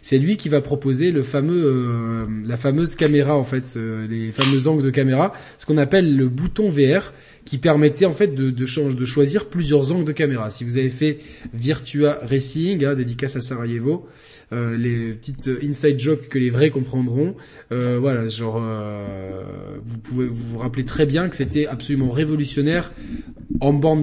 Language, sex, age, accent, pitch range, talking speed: French, male, 20-39, French, 125-150 Hz, 175 wpm